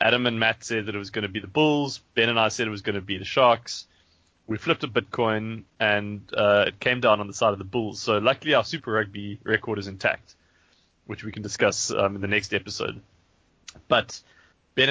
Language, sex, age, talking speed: English, male, 20-39, 230 wpm